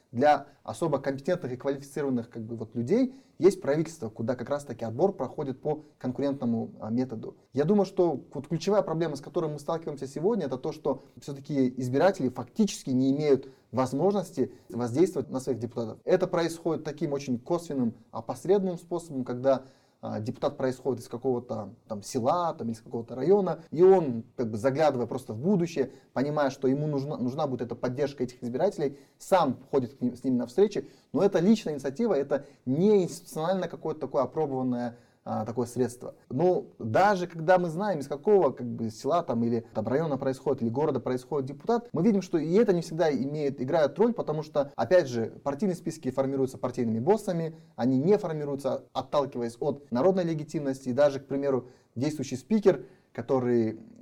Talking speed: 165 wpm